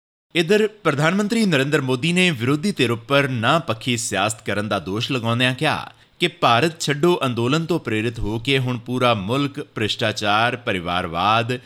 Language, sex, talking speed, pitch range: Punjabi, male, 155 wpm, 110-150 Hz